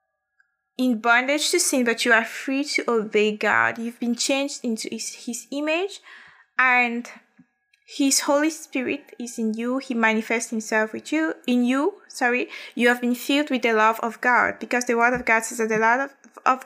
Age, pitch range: 20-39, 220-260 Hz